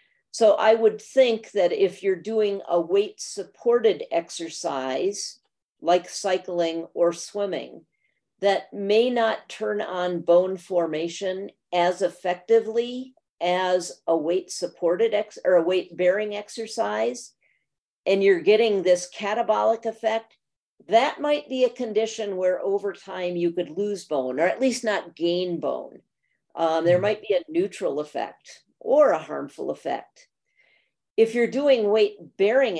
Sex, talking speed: female, 135 wpm